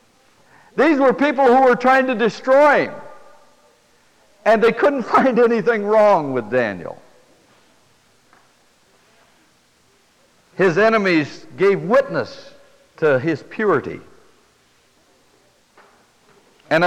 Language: English